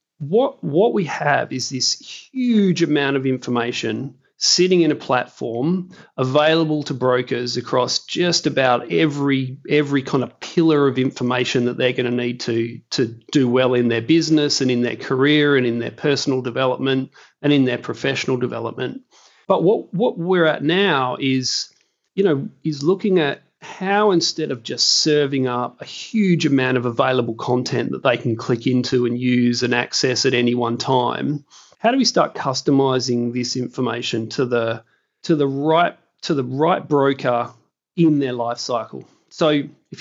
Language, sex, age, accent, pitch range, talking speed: English, male, 40-59, Australian, 125-150 Hz, 170 wpm